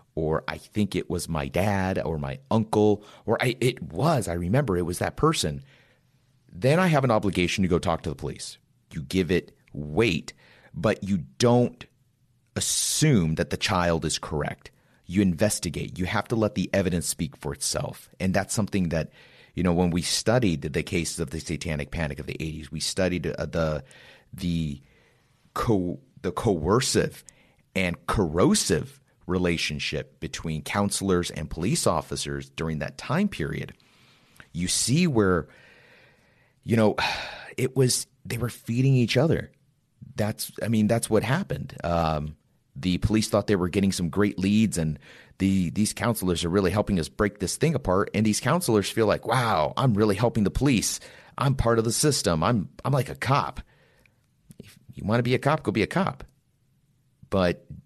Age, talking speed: 30-49, 175 wpm